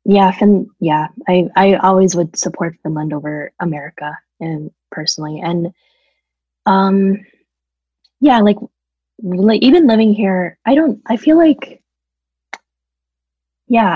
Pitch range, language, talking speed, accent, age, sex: 155-195 Hz, English, 120 wpm, American, 20-39, female